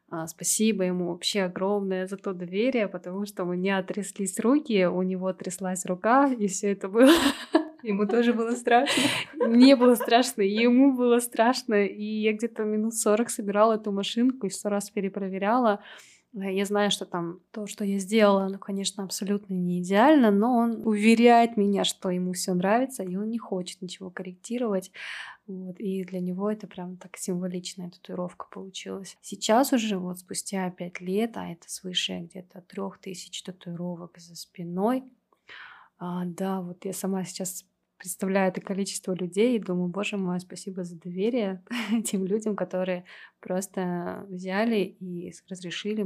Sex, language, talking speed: female, Russian, 155 wpm